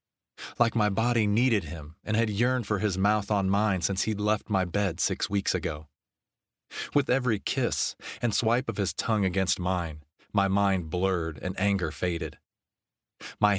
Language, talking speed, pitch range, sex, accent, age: English, 170 wpm, 90-105 Hz, male, American, 30-49